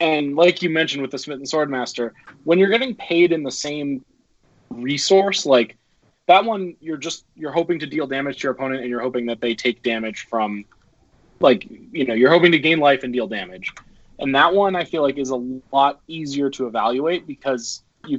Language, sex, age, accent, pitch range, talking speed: English, male, 20-39, American, 120-155 Hz, 210 wpm